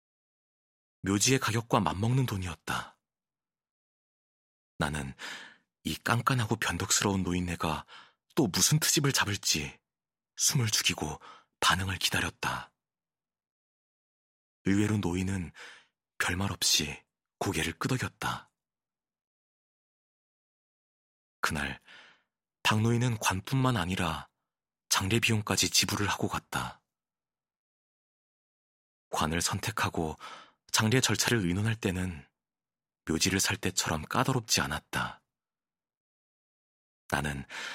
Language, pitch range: Korean, 80-115 Hz